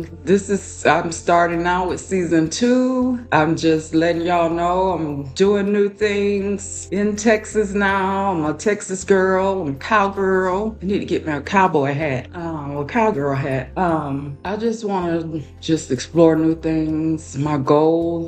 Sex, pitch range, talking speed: female, 150-185 Hz, 160 wpm